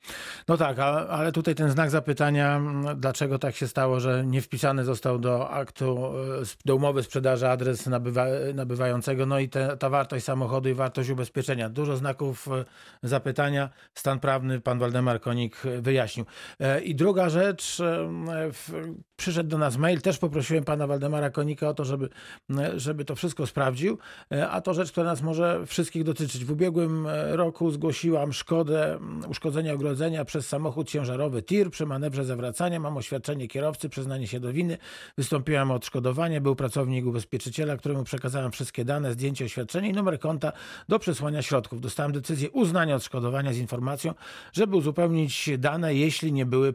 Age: 40-59